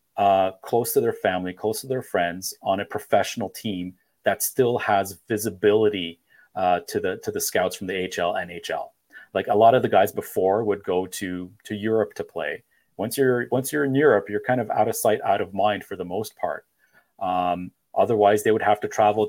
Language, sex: English, male